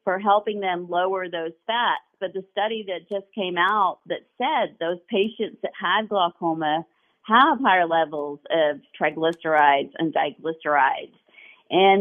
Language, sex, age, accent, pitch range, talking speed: English, female, 40-59, American, 170-205 Hz, 140 wpm